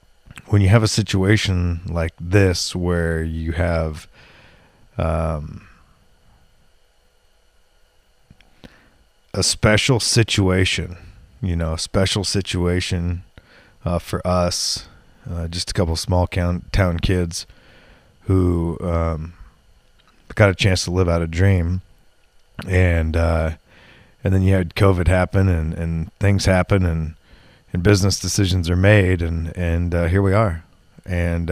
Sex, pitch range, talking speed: male, 85-95 Hz, 125 wpm